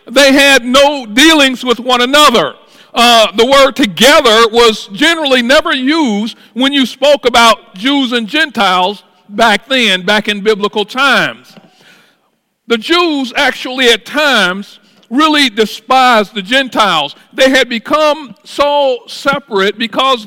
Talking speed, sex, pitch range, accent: 125 wpm, male, 205-260 Hz, American